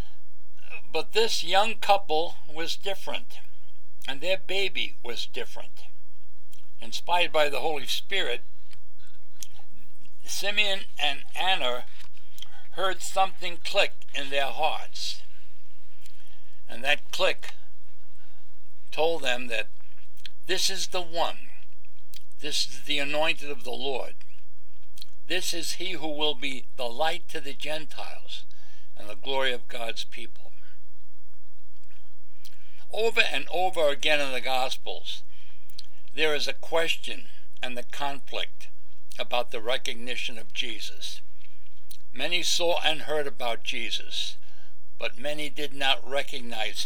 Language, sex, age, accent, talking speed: English, male, 60-79, American, 115 wpm